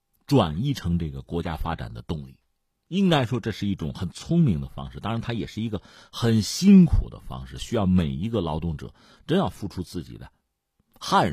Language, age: Chinese, 50-69